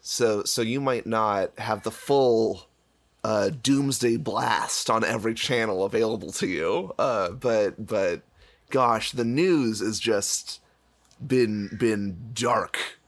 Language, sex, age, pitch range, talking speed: English, male, 30-49, 110-145 Hz, 130 wpm